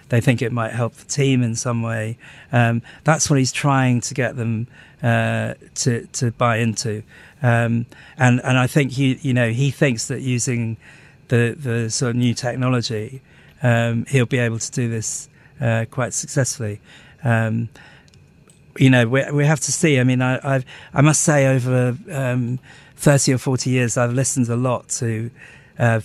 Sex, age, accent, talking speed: male, 40-59, British, 180 wpm